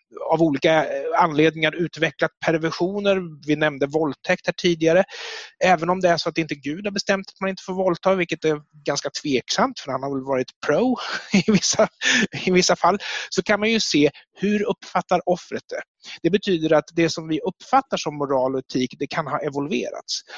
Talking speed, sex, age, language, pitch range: 190 wpm, male, 30-49, Swedish, 155-195 Hz